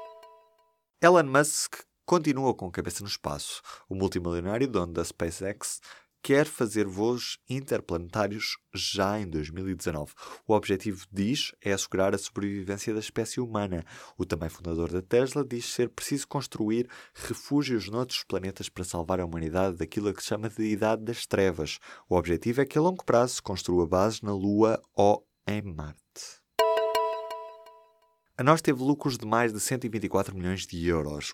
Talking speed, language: 155 wpm, Portuguese